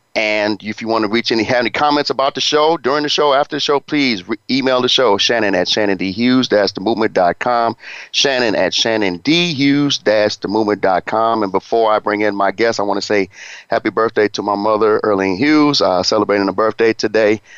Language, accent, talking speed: English, American, 195 wpm